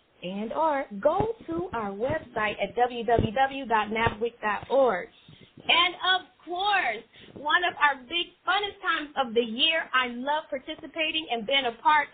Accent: American